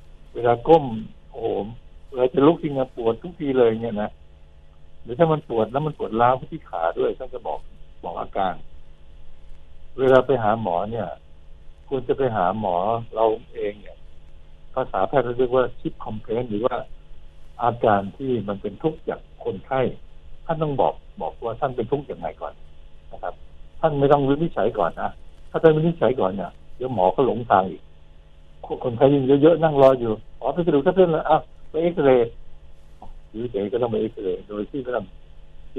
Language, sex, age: Thai, male, 60-79